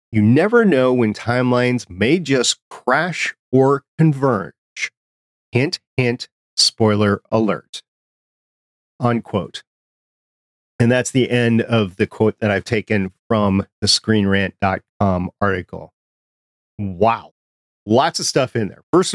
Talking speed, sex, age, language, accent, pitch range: 115 wpm, male, 40-59, English, American, 100-135 Hz